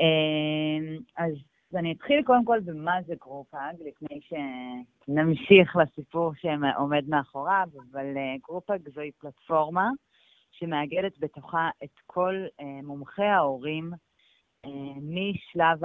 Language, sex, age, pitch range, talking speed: Hebrew, female, 30-49, 145-185 Hz, 95 wpm